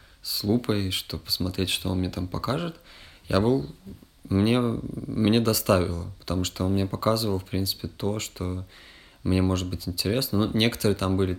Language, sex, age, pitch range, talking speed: Russian, male, 20-39, 90-100 Hz, 165 wpm